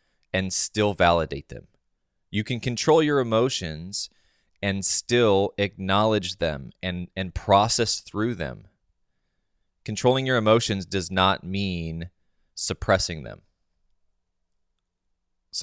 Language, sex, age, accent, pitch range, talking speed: English, male, 20-39, American, 85-110 Hz, 105 wpm